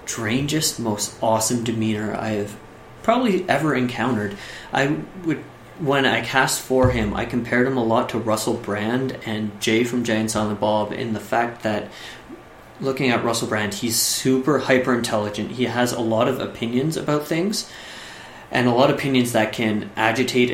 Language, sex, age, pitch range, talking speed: English, male, 30-49, 110-130 Hz, 170 wpm